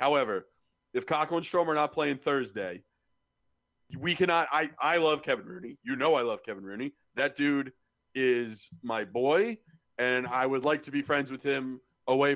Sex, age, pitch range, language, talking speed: male, 40-59, 130-170 Hz, English, 185 wpm